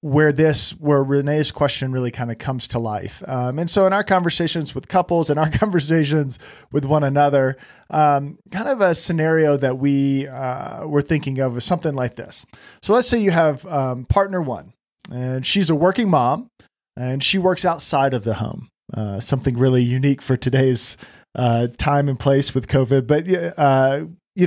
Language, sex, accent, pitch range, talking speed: English, male, American, 130-160 Hz, 185 wpm